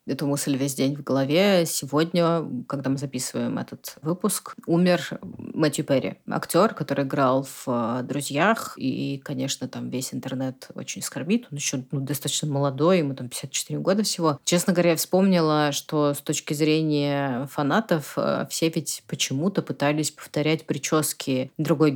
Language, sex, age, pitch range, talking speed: Russian, female, 30-49, 140-170 Hz, 145 wpm